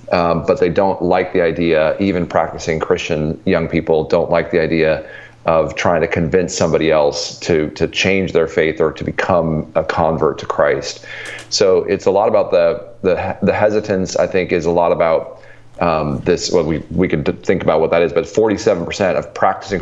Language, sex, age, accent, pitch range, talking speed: English, male, 30-49, American, 80-95 Hz, 195 wpm